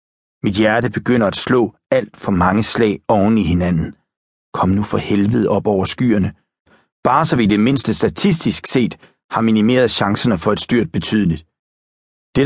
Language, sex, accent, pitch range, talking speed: Danish, male, native, 95-125 Hz, 165 wpm